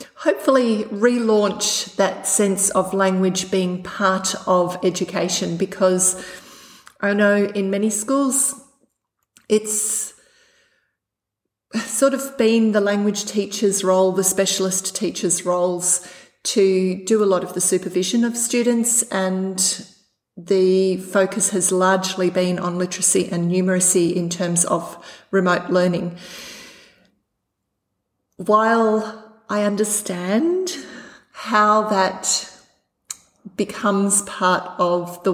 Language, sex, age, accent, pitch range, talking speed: English, female, 30-49, Australian, 185-220 Hz, 105 wpm